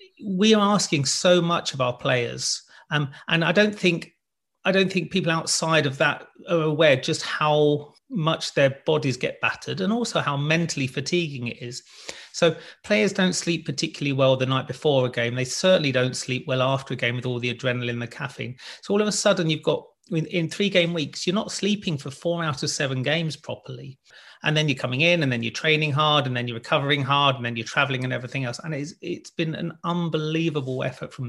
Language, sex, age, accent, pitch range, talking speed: English, male, 40-59, British, 130-160 Hz, 215 wpm